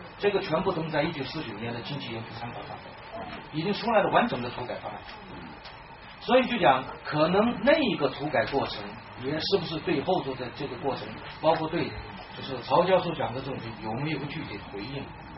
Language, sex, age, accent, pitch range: Chinese, male, 40-59, native, 120-180 Hz